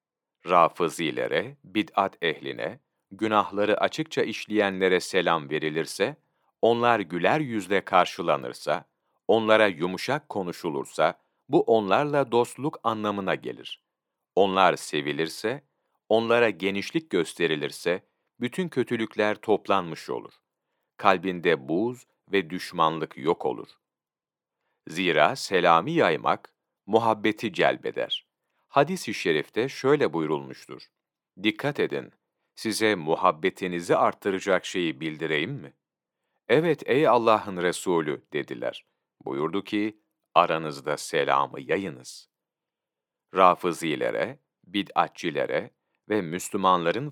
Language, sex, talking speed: Turkish, male, 85 wpm